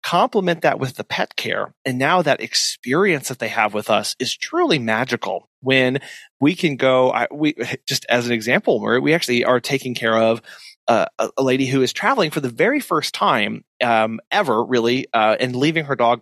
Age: 30-49